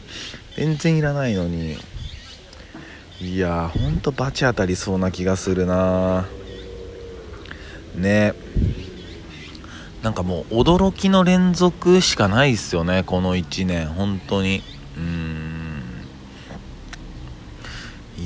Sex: male